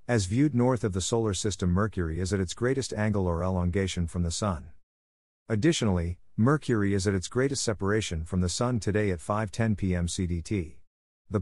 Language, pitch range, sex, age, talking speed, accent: English, 90-115 Hz, male, 50-69, 180 wpm, American